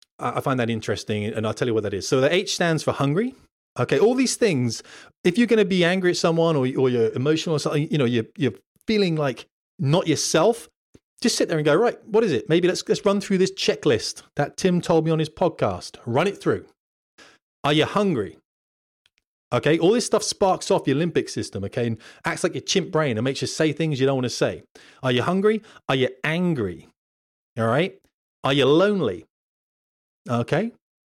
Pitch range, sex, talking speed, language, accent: 120-165 Hz, male, 210 wpm, English, British